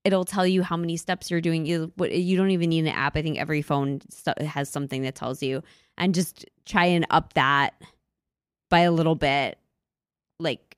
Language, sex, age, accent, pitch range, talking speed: English, female, 20-39, American, 155-200 Hz, 195 wpm